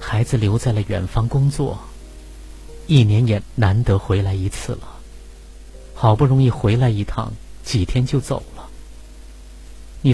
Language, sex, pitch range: Chinese, male, 80-125 Hz